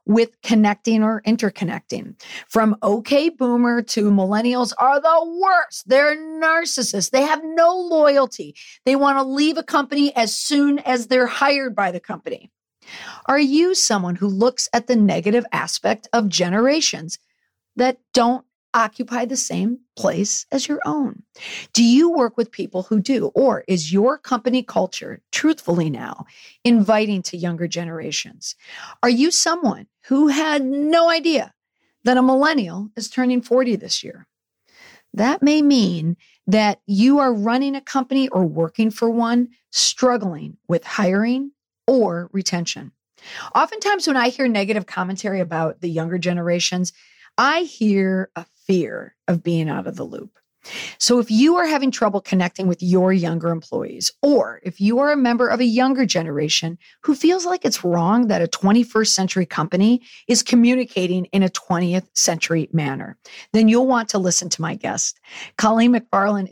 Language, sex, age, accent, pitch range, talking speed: English, female, 40-59, American, 185-265 Hz, 155 wpm